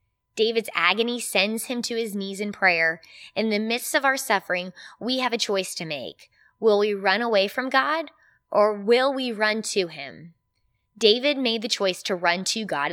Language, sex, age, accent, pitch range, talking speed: English, female, 20-39, American, 175-240 Hz, 190 wpm